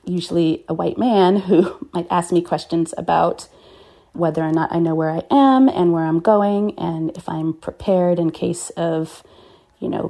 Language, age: English, 30-49